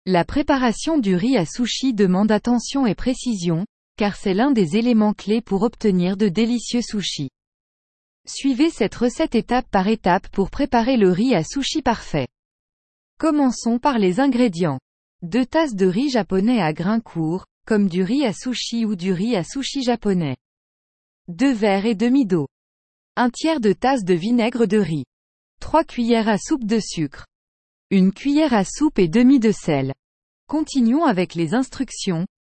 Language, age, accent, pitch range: English, 20-39, French, 185-250 Hz